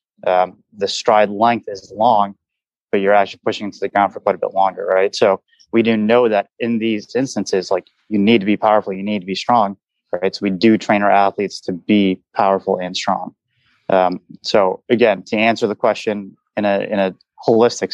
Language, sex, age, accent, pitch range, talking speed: English, male, 30-49, American, 95-110 Hz, 205 wpm